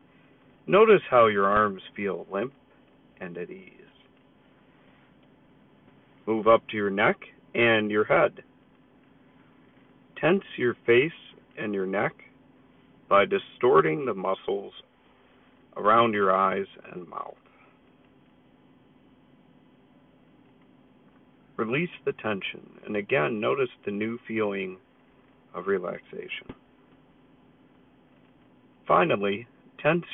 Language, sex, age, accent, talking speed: English, male, 50-69, American, 90 wpm